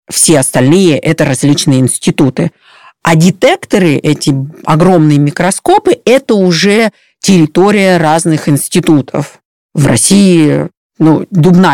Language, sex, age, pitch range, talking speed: Russian, female, 40-59, 165-220 Hz, 100 wpm